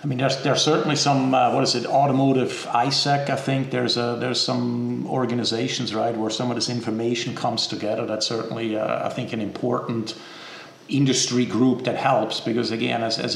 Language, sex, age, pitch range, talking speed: English, male, 50-69, 115-130 Hz, 190 wpm